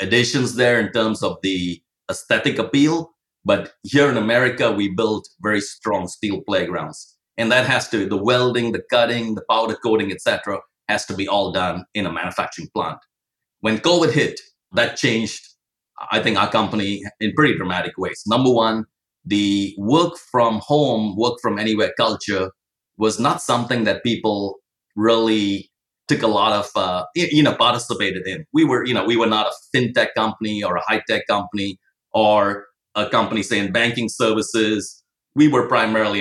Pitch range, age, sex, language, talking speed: 100-120 Hz, 30-49, male, English, 165 wpm